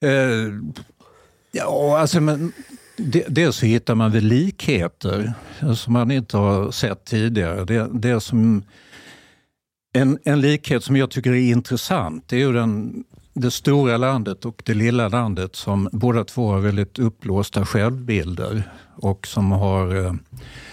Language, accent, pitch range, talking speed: Swedish, native, 100-125 Hz, 140 wpm